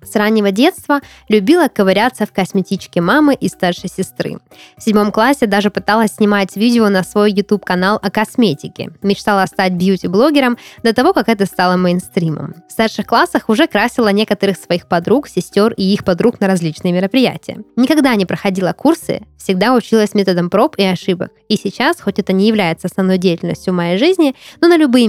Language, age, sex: Russian, 20-39, female